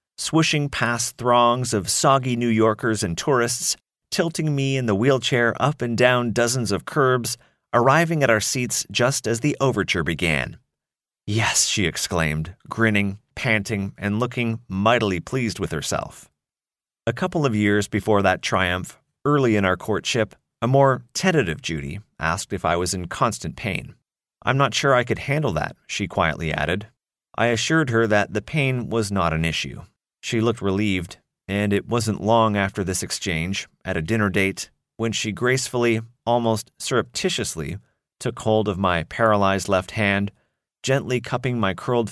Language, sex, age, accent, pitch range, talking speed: English, male, 30-49, American, 100-125 Hz, 160 wpm